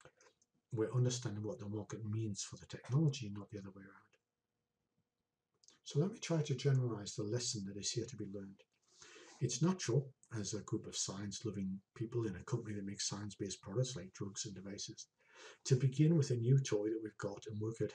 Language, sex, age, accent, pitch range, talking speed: English, male, 60-79, British, 105-135 Hz, 195 wpm